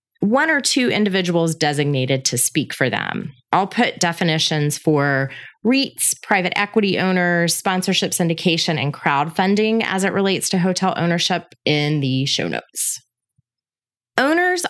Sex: female